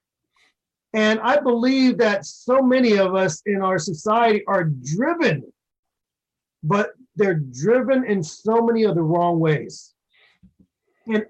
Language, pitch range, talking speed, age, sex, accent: English, 185-240 Hz, 125 wpm, 30-49, male, American